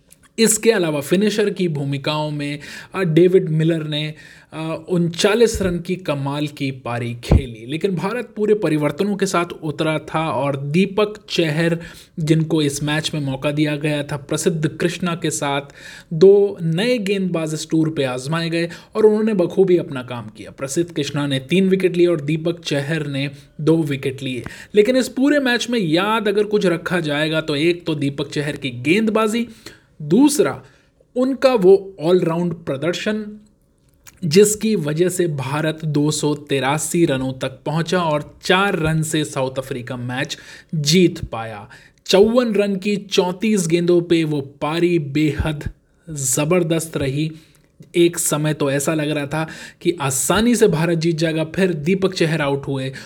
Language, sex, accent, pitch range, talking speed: Hindi, male, native, 145-185 Hz, 155 wpm